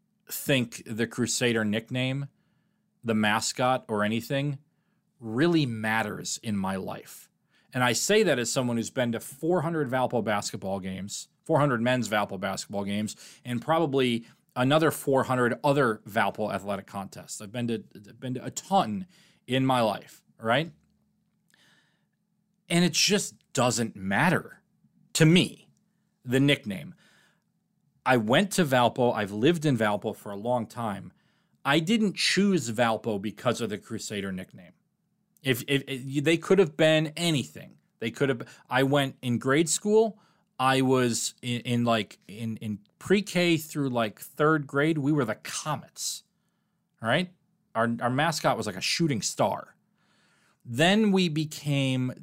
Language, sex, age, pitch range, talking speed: English, male, 30-49, 115-175 Hz, 145 wpm